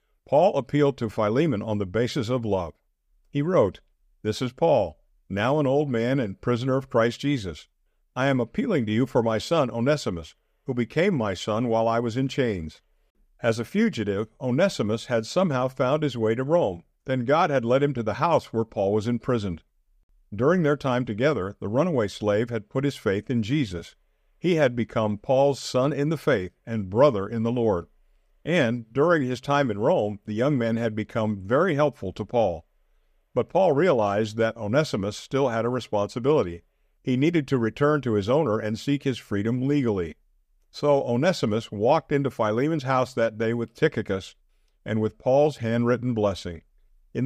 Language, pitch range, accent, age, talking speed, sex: English, 110-140 Hz, American, 50-69, 180 wpm, male